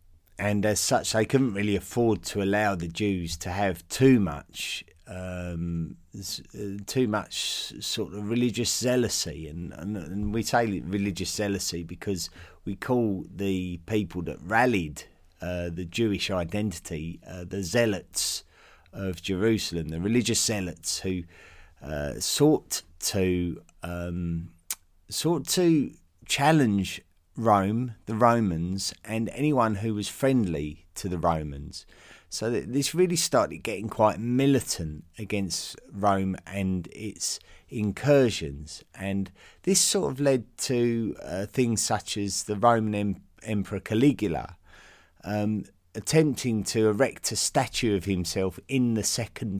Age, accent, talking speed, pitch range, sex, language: 30-49, British, 125 wpm, 90-110 Hz, male, English